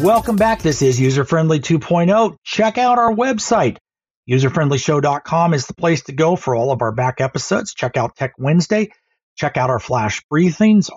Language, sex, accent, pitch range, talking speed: English, male, American, 130-175 Hz, 175 wpm